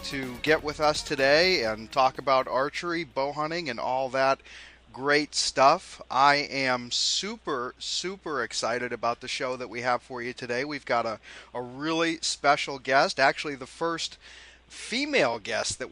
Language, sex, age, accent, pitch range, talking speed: English, male, 30-49, American, 125-150 Hz, 160 wpm